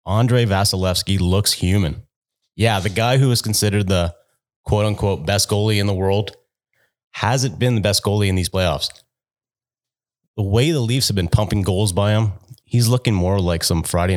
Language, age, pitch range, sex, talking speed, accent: English, 30-49, 95-120 Hz, male, 175 wpm, American